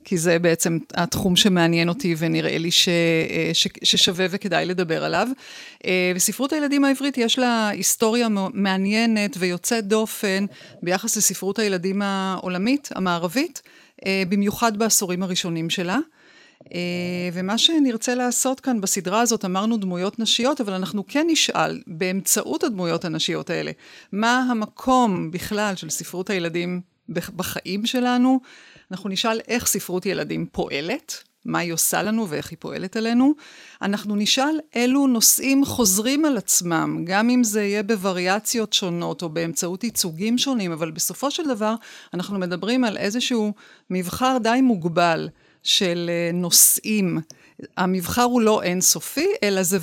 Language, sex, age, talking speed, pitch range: Hebrew, female, 40-59, 130 wpm, 180-240 Hz